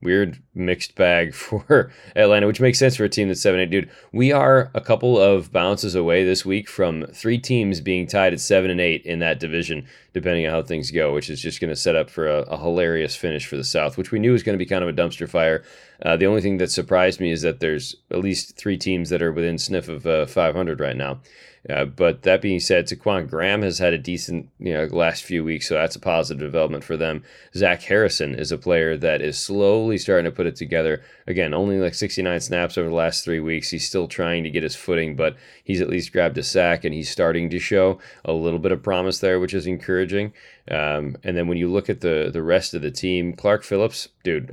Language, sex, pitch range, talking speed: English, male, 80-95 Hz, 245 wpm